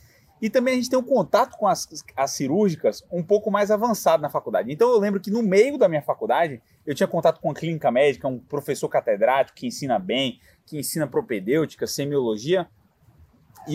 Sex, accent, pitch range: male, Brazilian, 145-210 Hz